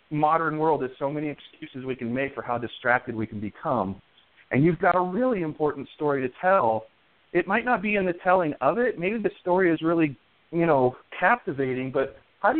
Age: 40-59